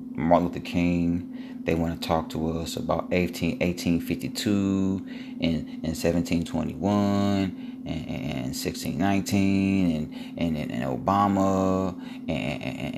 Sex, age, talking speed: male, 30-49, 140 wpm